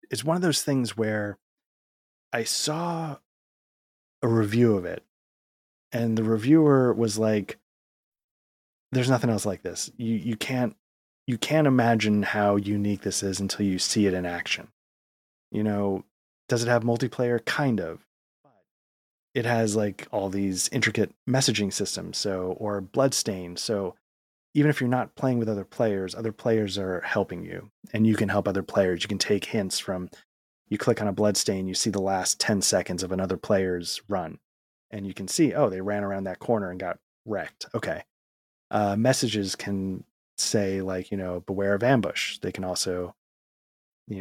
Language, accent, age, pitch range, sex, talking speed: English, American, 20-39, 95-120 Hz, male, 170 wpm